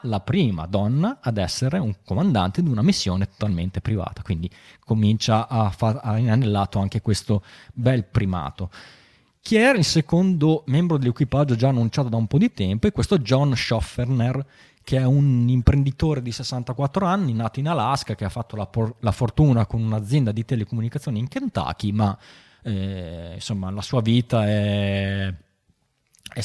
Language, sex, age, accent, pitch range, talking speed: Italian, male, 20-39, native, 105-130 Hz, 160 wpm